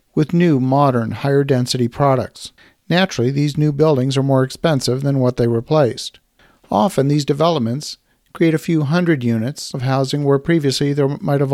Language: English